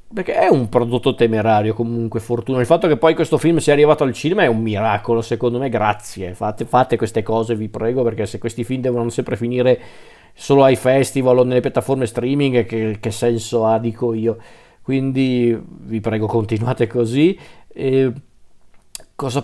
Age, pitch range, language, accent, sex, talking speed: 40-59, 115-140 Hz, Italian, native, male, 175 wpm